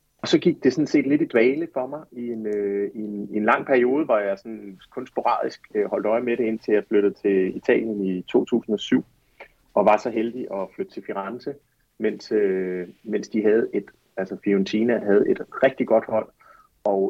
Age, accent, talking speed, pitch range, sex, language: 30-49, native, 200 wpm, 95-125 Hz, male, Danish